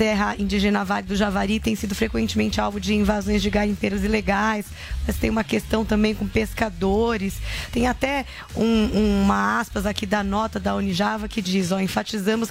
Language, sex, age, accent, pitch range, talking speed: Portuguese, female, 20-39, Brazilian, 205-230 Hz, 170 wpm